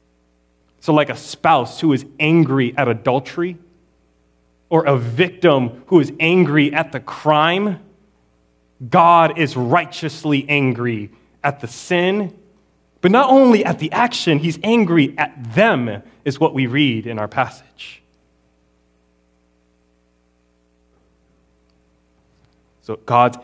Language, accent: English, American